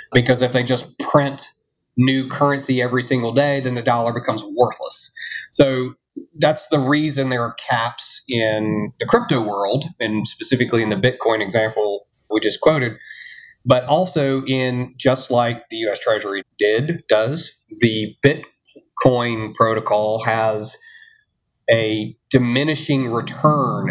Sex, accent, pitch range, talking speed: male, American, 115-140 Hz, 130 wpm